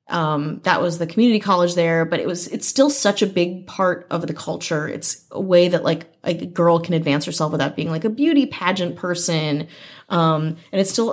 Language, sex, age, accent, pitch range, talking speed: English, female, 30-49, American, 155-185 Hz, 215 wpm